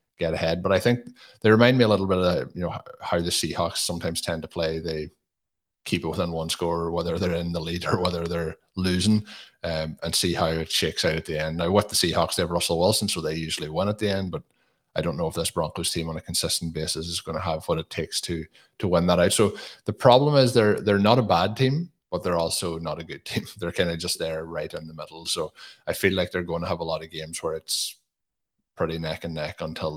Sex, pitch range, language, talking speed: male, 80-95 Hz, English, 260 wpm